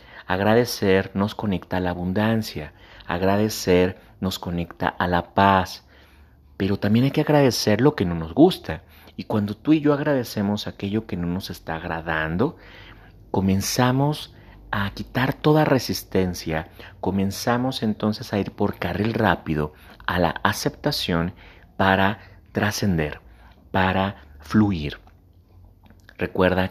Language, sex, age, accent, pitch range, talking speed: Spanish, male, 40-59, Mexican, 90-110 Hz, 120 wpm